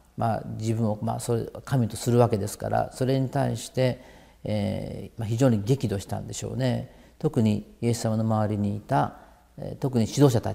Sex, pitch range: male, 105-125 Hz